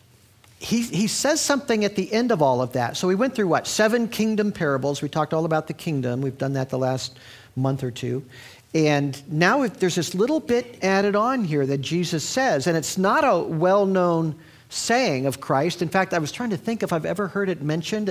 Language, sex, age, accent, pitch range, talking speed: English, male, 50-69, American, 135-190 Hz, 220 wpm